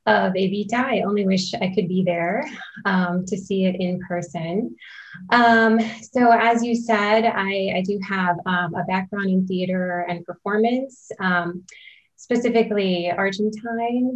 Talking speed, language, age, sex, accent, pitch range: 145 wpm, English, 20-39, female, American, 180-215 Hz